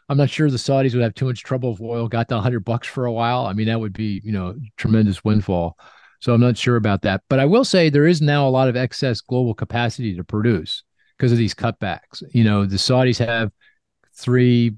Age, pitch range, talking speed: 40-59, 105-125 Hz, 245 wpm